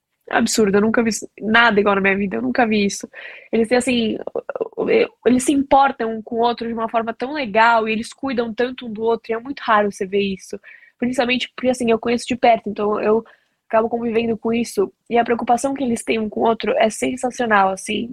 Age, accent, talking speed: 10-29, Brazilian, 225 wpm